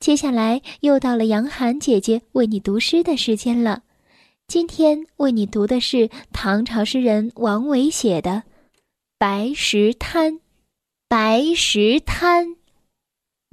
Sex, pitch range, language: female, 220-325 Hz, Chinese